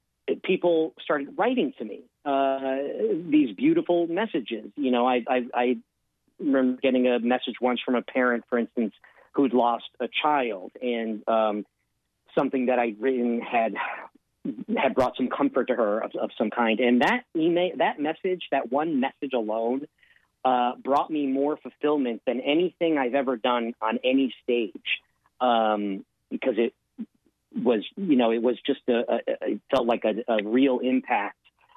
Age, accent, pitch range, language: 40-59, American, 120-145 Hz, English